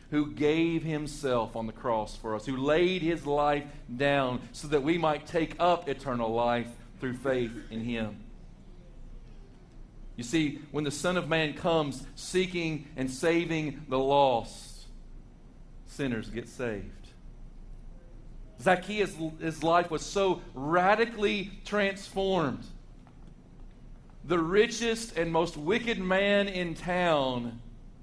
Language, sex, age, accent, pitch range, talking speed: English, male, 40-59, American, 125-165 Hz, 120 wpm